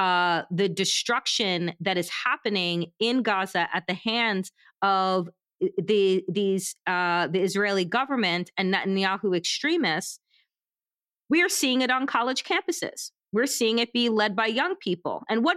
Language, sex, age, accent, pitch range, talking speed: English, female, 30-49, American, 195-255 Hz, 145 wpm